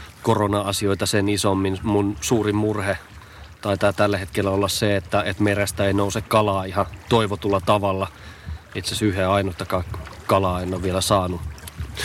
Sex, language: male, Finnish